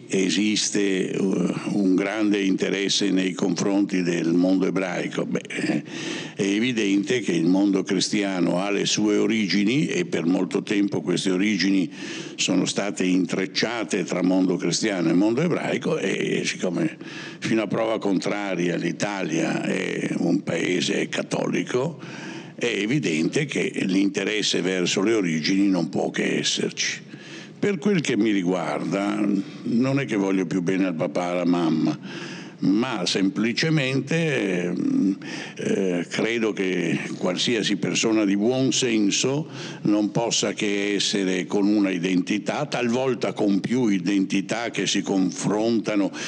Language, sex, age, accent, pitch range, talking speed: Italian, male, 60-79, native, 95-105 Hz, 125 wpm